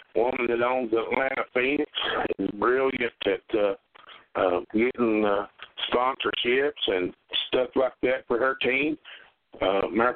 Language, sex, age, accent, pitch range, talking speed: English, male, 50-69, American, 115-150 Hz, 130 wpm